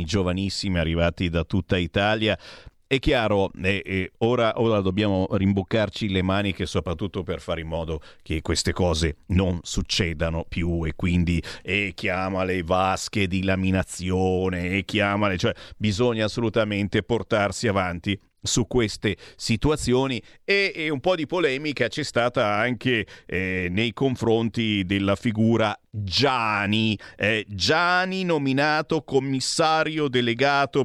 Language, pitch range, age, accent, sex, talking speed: Italian, 95-125 Hz, 40-59, native, male, 130 wpm